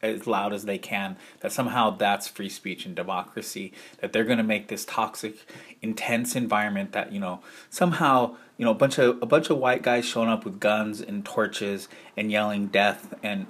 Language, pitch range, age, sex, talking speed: English, 105-130 Hz, 30-49, male, 200 wpm